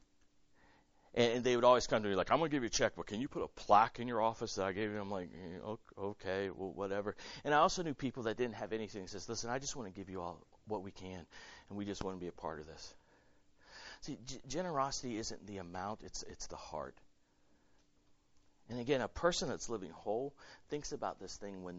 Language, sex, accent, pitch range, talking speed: English, male, American, 95-130 Hz, 240 wpm